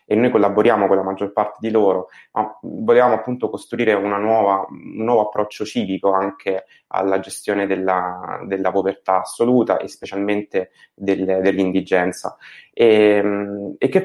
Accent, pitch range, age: native, 95-125 Hz, 20-39